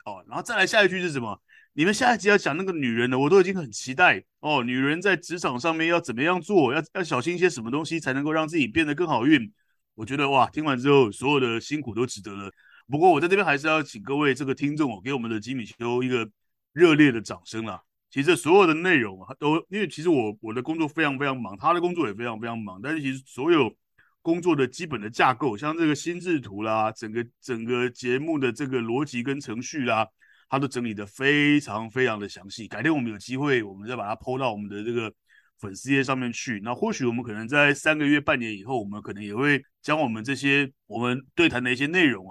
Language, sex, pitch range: Chinese, male, 120-160 Hz